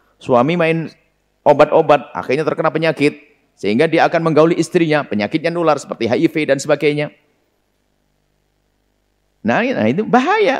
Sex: male